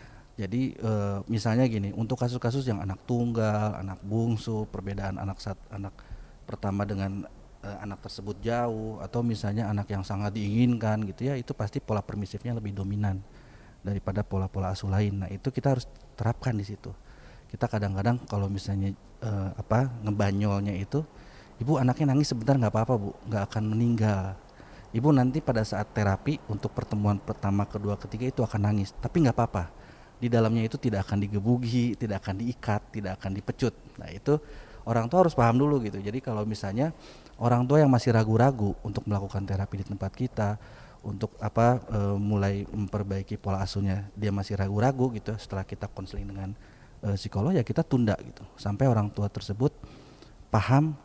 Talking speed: 165 wpm